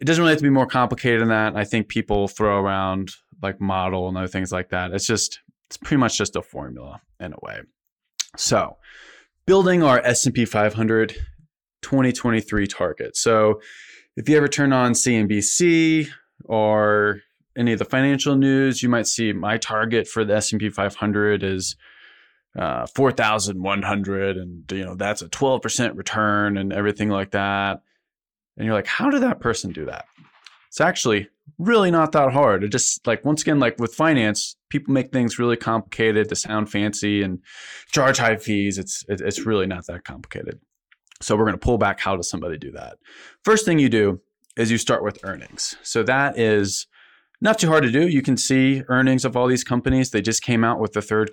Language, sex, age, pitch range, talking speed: English, male, 20-39, 105-130 Hz, 185 wpm